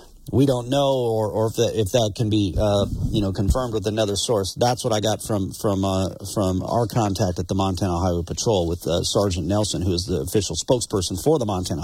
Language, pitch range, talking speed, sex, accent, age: English, 110-180 Hz, 230 wpm, male, American, 40-59